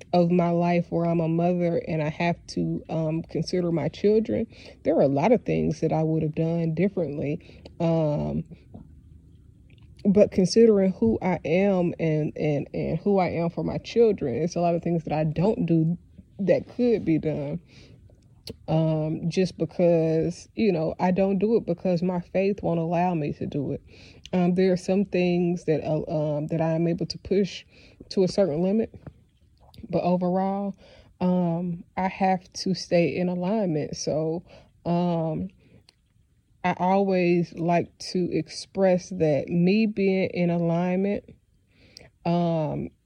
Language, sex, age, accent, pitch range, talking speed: English, female, 20-39, American, 160-180 Hz, 155 wpm